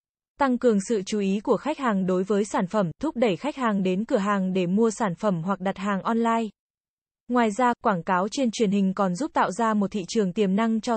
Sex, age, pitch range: female, 20-39, 200-240 Hz